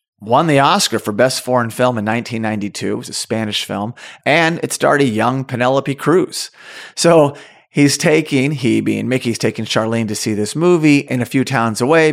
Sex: male